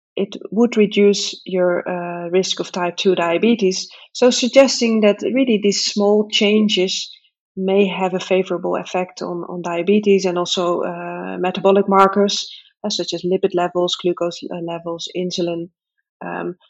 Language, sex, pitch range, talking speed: English, female, 185-220 Hz, 140 wpm